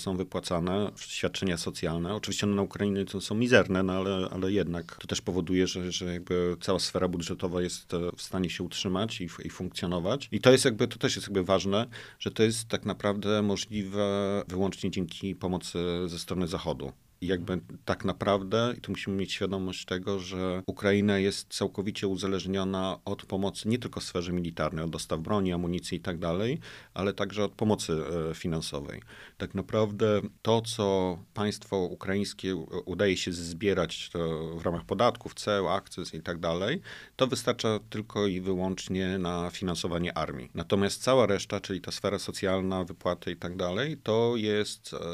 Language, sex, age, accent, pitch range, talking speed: Polish, male, 40-59, native, 90-105 Hz, 165 wpm